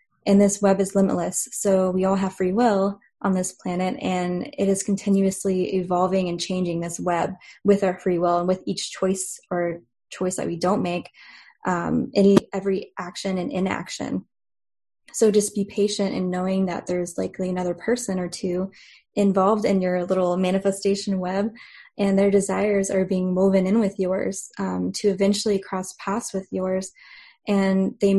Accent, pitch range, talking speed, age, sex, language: American, 185-200 Hz, 170 wpm, 10-29, female, English